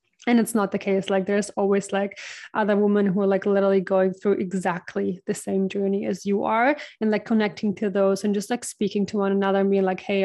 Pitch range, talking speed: 195-215 Hz, 230 wpm